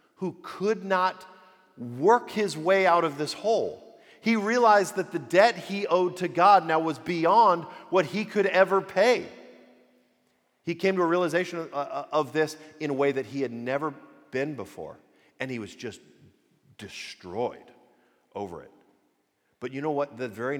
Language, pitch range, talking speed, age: English, 155-220 Hz, 165 wpm, 40-59